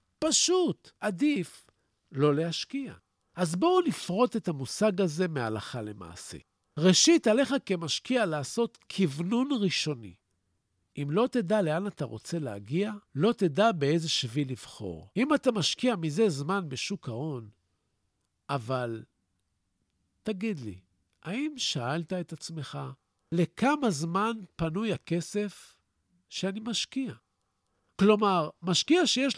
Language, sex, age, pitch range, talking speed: Hebrew, male, 50-69, 145-235 Hz, 110 wpm